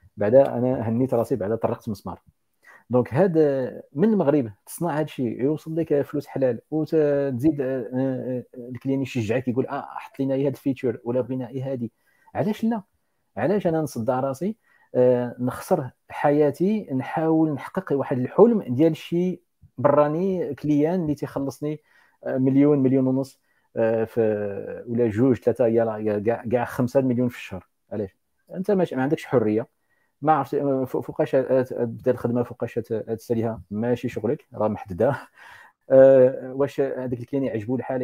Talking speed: 135 wpm